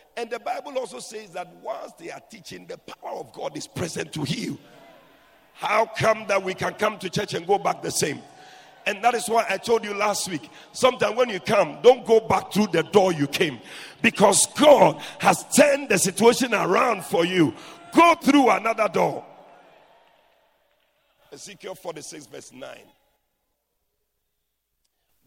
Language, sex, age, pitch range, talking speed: English, male, 50-69, 205-260 Hz, 165 wpm